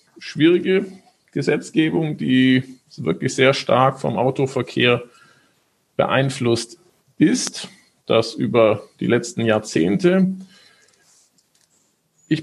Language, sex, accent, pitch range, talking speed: German, male, German, 120-160 Hz, 75 wpm